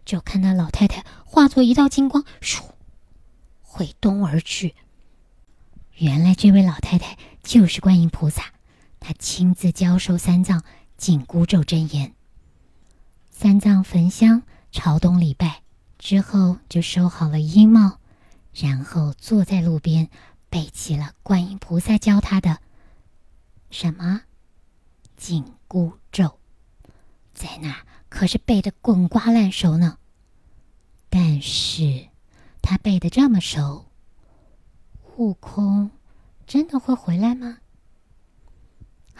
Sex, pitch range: male, 145-200 Hz